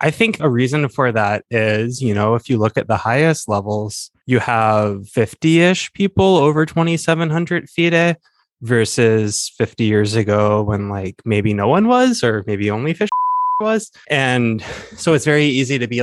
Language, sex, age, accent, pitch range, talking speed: English, male, 20-39, American, 105-135 Hz, 170 wpm